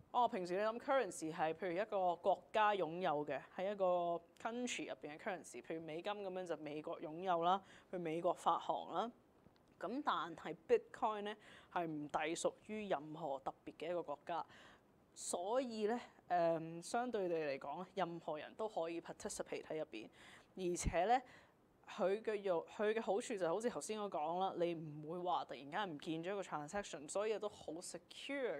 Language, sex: Chinese, female